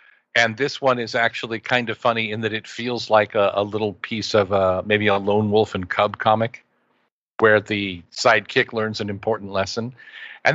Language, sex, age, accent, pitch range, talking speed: English, male, 50-69, American, 105-130 Hz, 195 wpm